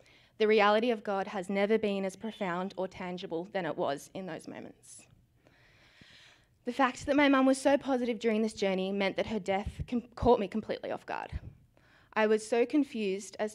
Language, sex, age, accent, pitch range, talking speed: English, female, 20-39, Australian, 190-230 Hz, 185 wpm